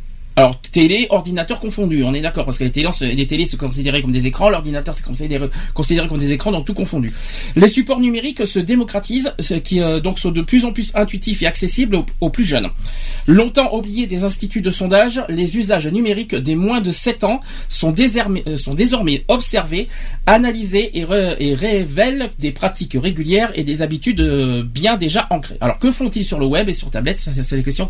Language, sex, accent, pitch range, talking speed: French, male, French, 160-235 Hz, 200 wpm